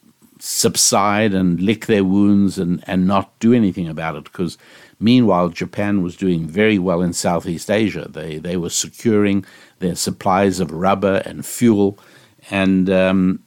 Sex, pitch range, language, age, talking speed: male, 90-105 Hz, English, 60-79, 150 wpm